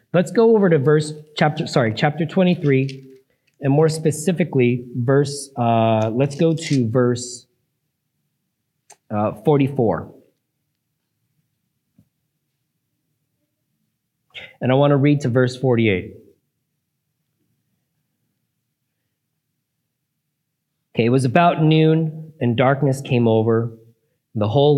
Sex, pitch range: male, 120-155 Hz